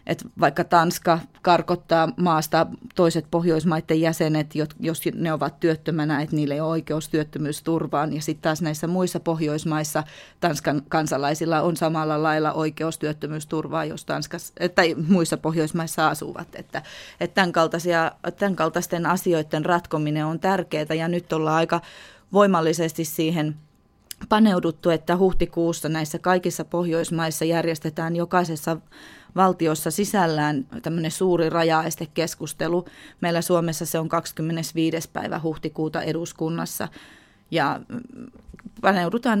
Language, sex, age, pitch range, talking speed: Finnish, female, 20-39, 160-175 Hz, 115 wpm